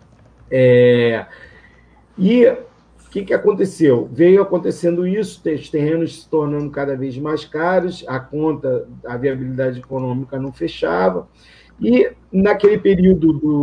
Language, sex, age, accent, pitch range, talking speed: Portuguese, male, 40-59, Brazilian, 130-165 Hz, 125 wpm